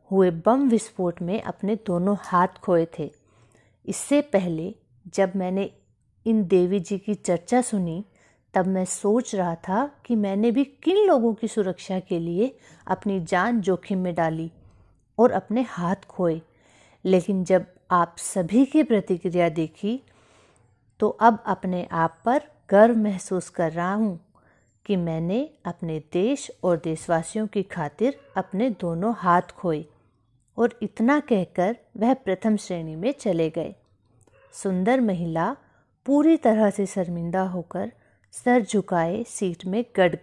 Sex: female